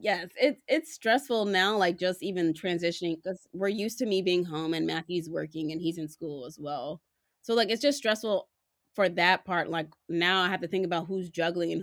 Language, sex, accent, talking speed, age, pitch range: English, female, American, 215 wpm, 20-39, 165-200 Hz